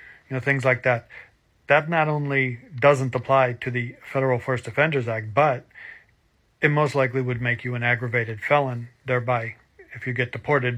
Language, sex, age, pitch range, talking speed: English, male, 40-59, 125-140 Hz, 175 wpm